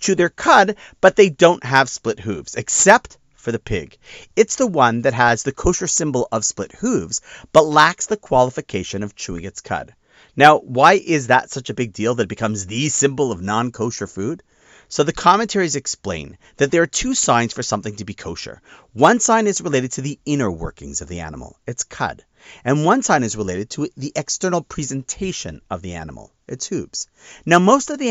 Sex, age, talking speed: male, 40-59, 200 wpm